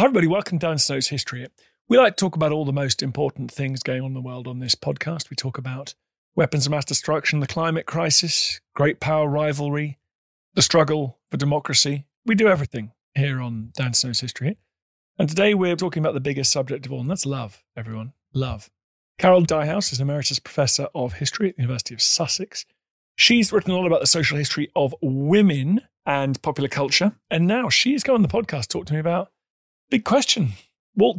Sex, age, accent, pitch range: male, 40-59, British, 130-175 Hz